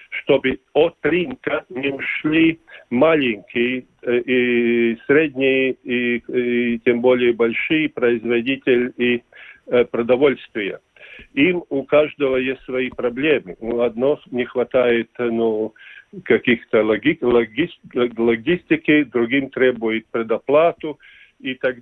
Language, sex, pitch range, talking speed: Russian, male, 120-140 Hz, 95 wpm